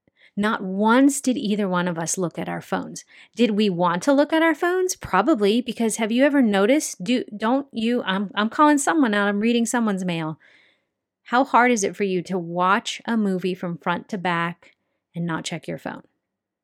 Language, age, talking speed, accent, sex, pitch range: English, 30-49, 205 wpm, American, female, 185-240 Hz